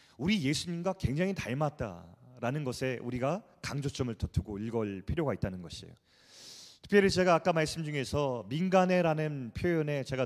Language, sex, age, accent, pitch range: Korean, male, 30-49, native, 125-185 Hz